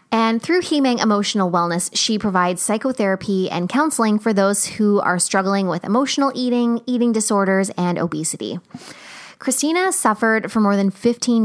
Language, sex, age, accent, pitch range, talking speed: English, female, 20-39, American, 180-225 Hz, 145 wpm